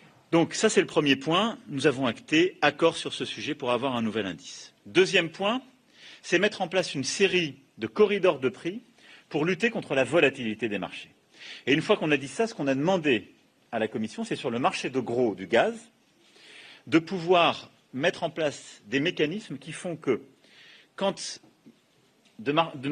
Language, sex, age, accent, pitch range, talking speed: French, male, 40-59, French, 135-195 Hz, 185 wpm